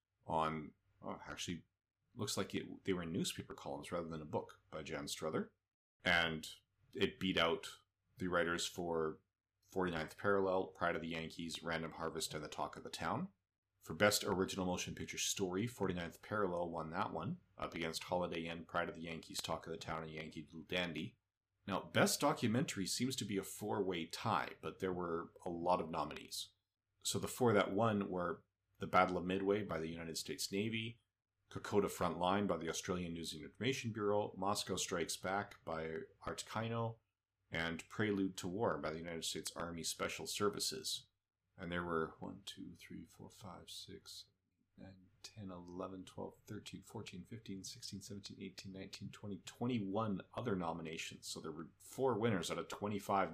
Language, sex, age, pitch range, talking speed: English, male, 30-49, 85-100 Hz, 175 wpm